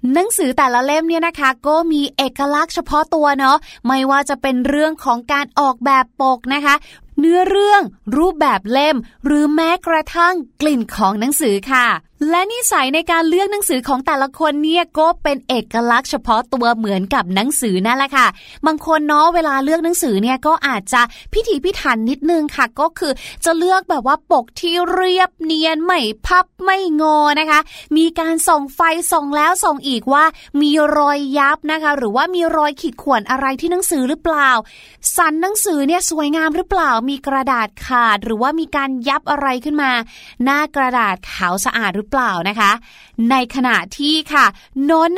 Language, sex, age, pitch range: Thai, female, 20-39, 250-320 Hz